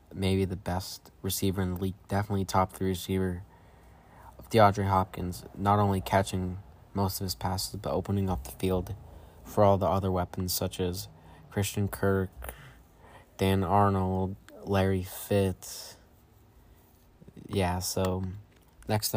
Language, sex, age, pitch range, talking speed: English, male, 20-39, 95-105 Hz, 130 wpm